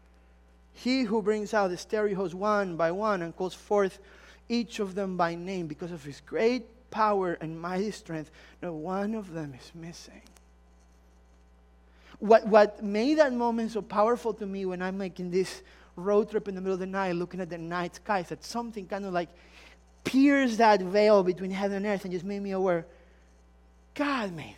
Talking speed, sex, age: 190 wpm, male, 30-49